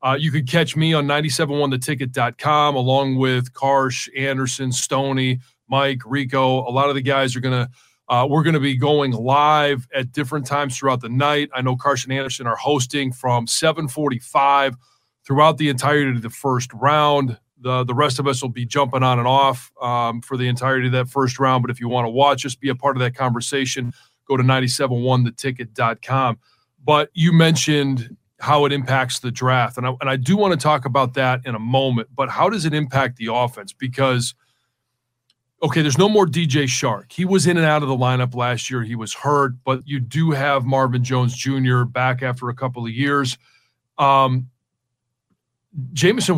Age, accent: 30-49, American